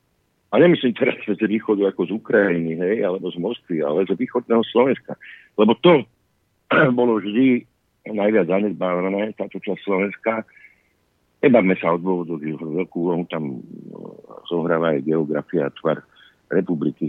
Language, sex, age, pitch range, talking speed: Slovak, male, 50-69, 85-120 Hz, 140 wpm